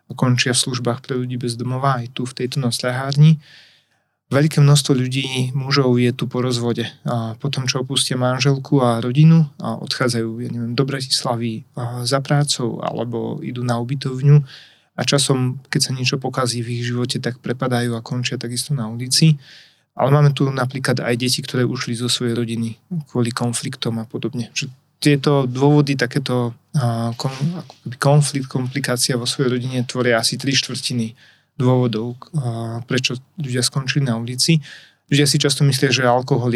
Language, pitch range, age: Slovak, 120-140 Hz, 30-49